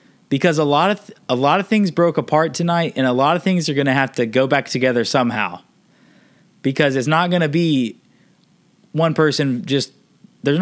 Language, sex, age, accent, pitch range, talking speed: English, male, 20-39, American, 140-185 Hz, 205 wpm